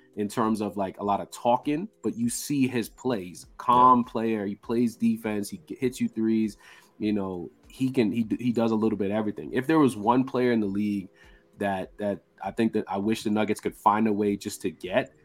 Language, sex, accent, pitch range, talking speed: English, male, American, 100-125 Hz, 230 wpm